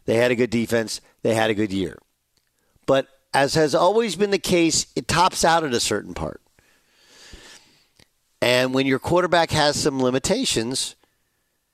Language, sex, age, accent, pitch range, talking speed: English, male, 50-69, American, 120-155 Hz, 160 wpm